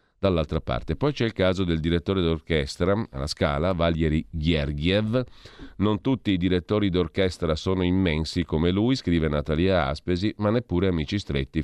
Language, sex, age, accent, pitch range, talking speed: Italian, male, 40-59, native, 75-95 Hz, 150 wpm